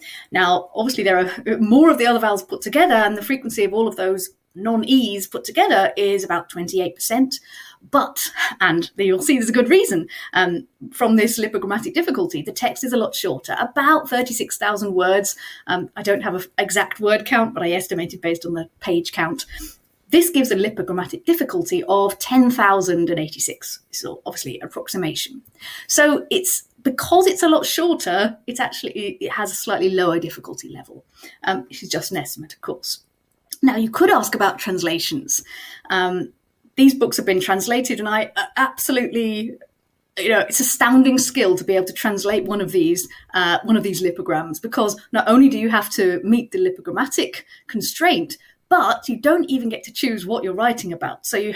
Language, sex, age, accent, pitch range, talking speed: English, female, 30-49, British, 190-280 Hz, 175 wpm